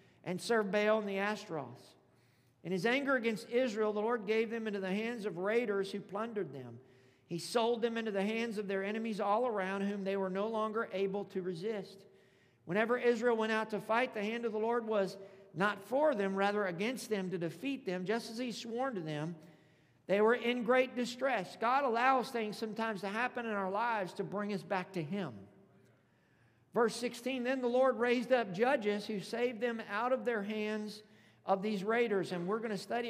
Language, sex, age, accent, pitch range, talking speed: English, male, 50-69, American, 195-235 Hz, 205 wpm